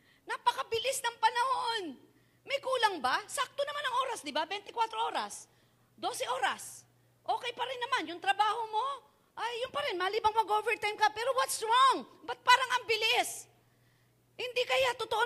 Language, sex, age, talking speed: Filipino, female, 40-59, 160 wpm